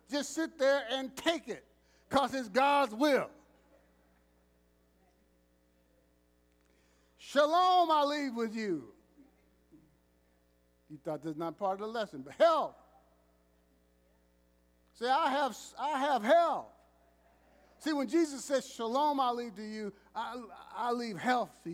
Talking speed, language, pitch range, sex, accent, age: 125 wpm, English, 140-220 Hz, male, American, 50-69